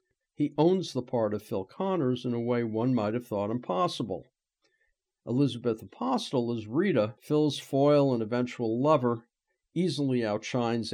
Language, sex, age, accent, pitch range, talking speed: English, male, 50-69, American, 115-150 Hz, 145 wpm